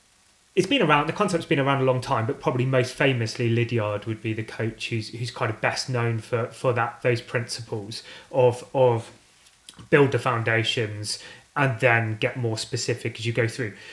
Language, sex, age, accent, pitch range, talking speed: English, male, 30-49, British, 115-135 Hz, 190 wpm